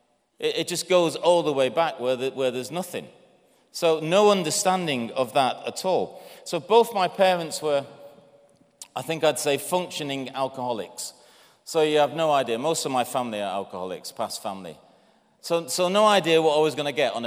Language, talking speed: English, 190 wpm